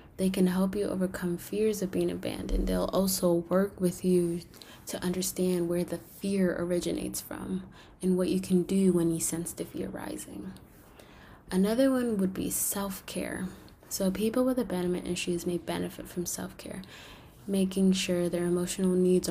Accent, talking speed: American, 160 wpm